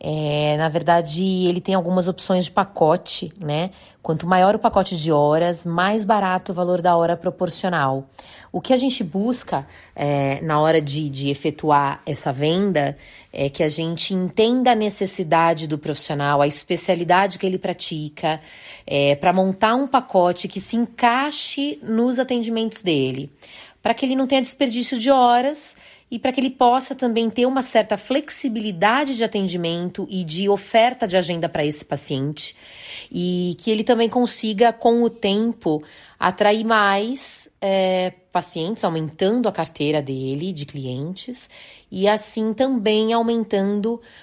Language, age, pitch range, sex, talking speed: Portuguese, 30-49, 160-225 Hz, female, 150 wpm